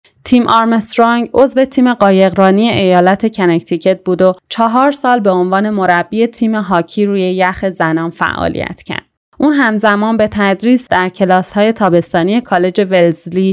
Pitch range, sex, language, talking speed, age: 185-230 Hz, female, Persian, 130 wpm, 30-49